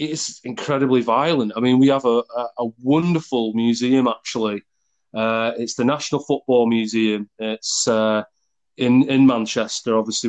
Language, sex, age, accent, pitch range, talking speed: English, male, 30-49, British, 110-135 Hz, 145 wpm